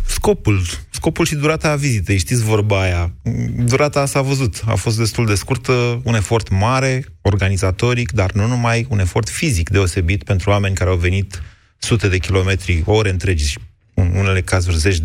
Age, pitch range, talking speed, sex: 30-49, 95-115 Hz, 175 wpm, male